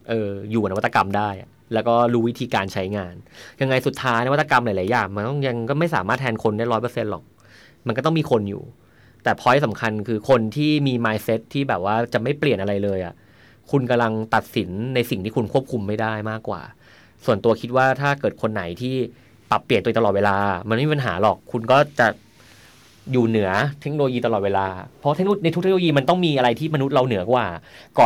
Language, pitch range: Thai, 105-140 Hz